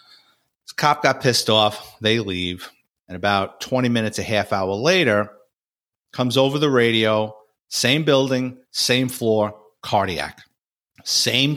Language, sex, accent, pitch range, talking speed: English, male, American, 110-155 Hz, 125 wpm